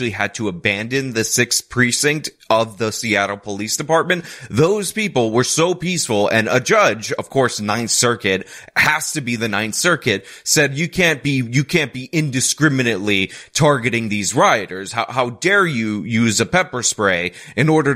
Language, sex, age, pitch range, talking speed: English, male, 30-49, 105-145 Hz, 165 wpm